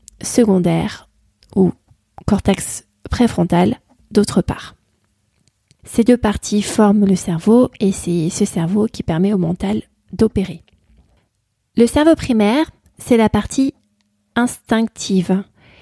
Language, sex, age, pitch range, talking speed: French, female, 30-49, 180-225 Hz, 105 wpm